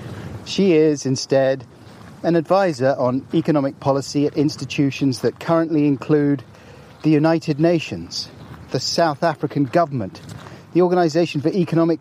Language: English